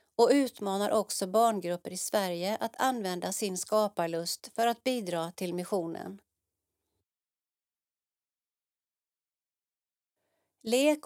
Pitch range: 185-235 Hz